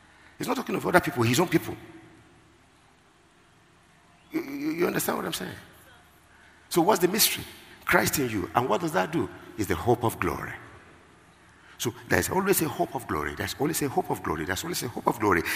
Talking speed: 200 wpm